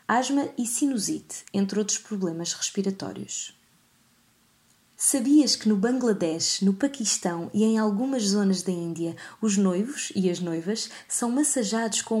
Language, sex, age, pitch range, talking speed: Portuguese, female, 20-39, 185-255 Hz, 135 wpm